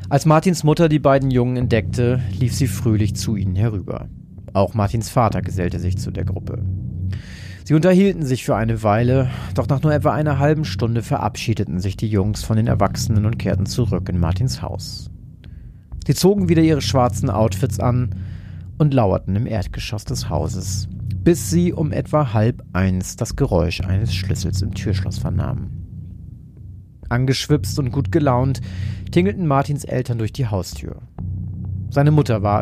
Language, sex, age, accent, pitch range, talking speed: German, male, 40-59, German, 95-135 Hz, 160 wpm